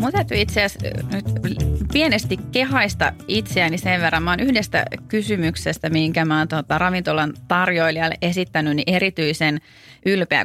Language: Finnish